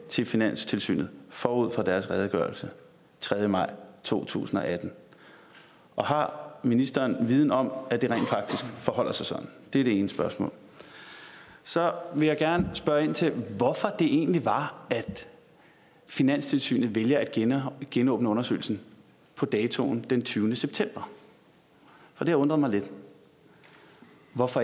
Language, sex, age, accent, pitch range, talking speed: Danish, male, 30-49, native, 120-145 Hz, 135 wpm